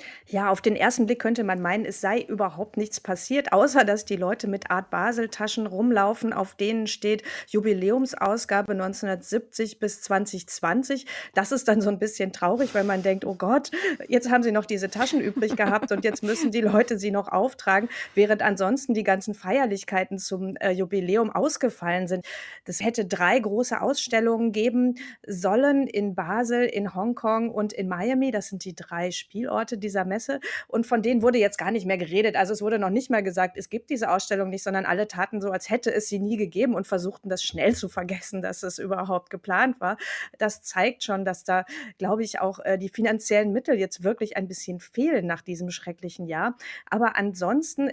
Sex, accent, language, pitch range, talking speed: female, German, German, 190-230 Hz, 190 wpm